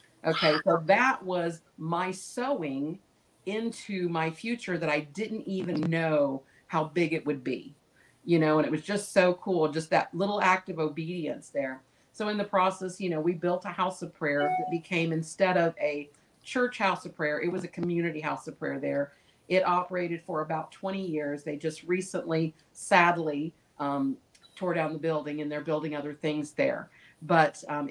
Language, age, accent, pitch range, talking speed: English, 50-69, American, 155-180 Hz, 185 wpm